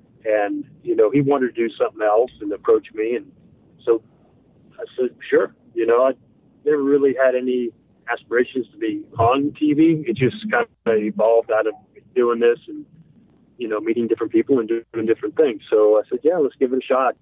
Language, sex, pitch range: English, male, 110-150 Hz